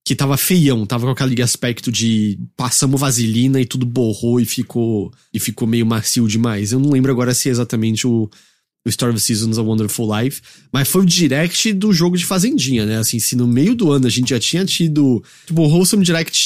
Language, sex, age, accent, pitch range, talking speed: English, male, 20-39, Brazilian, 115-175 Hz, 215 wpm